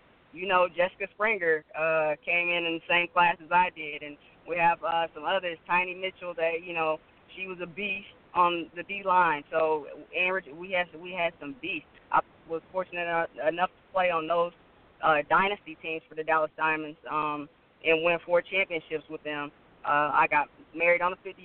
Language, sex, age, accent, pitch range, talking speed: English, female, 20-39, American, 165-190 Hz, 195 wpm